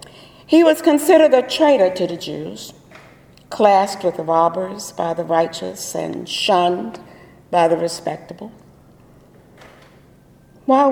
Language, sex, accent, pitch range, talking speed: English, female, American, 185-265 Hz, 115 wpm